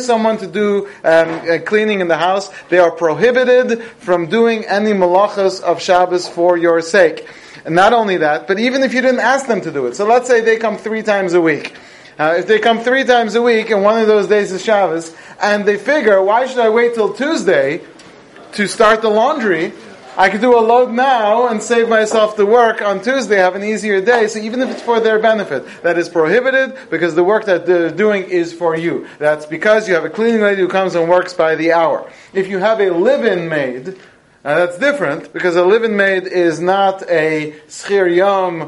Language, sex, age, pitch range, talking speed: English, male, 30-49, 170-225 Hz, 215 wpm